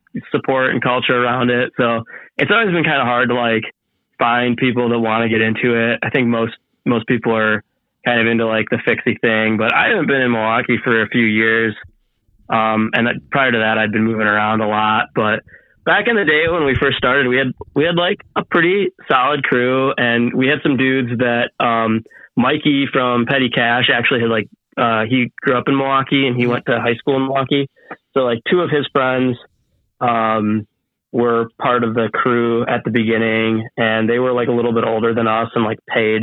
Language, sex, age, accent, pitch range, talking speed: English, male, 20-39, American, 115-130 Hz, 215 wpm